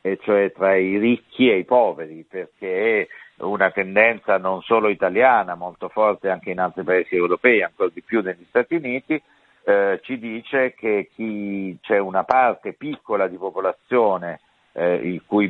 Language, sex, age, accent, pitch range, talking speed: Italian, male, 50-69, native, 95-130 Hz, 165 wpm